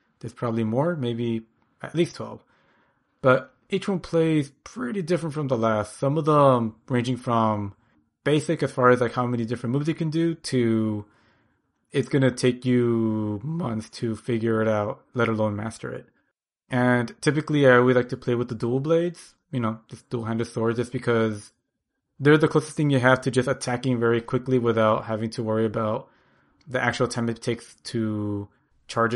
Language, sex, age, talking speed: English, male, 20-39, 185 wpm